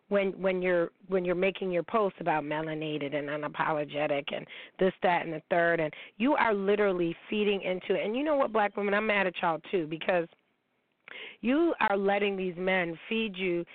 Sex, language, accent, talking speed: female, English, American, 190 wpm